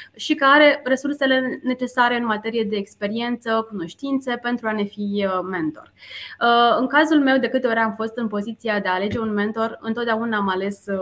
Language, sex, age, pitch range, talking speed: Romanian, female, 20-39, 200-250 Hz, 180 wpm